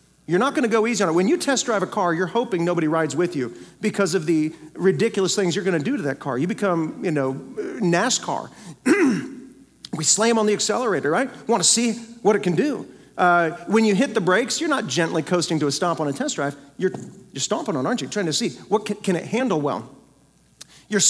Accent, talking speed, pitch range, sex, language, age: American, 235 wpm, 170-230 Hz, male, English, 40-59